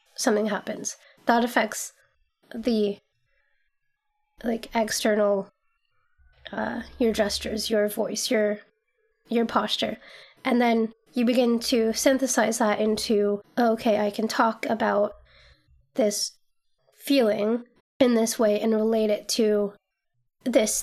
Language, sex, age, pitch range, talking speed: English, female, 20-39, 215-265 Hz, 110 wpm